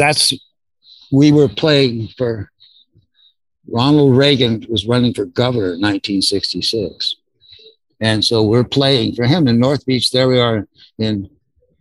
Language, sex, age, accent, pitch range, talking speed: English, male, 60-79, American, 110-145 Hz, 130 wpm